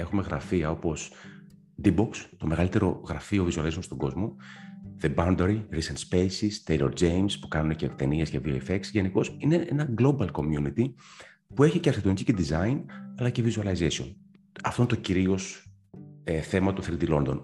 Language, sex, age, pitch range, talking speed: Greek, male, 30-49, 80-115 Hz, 150 wpm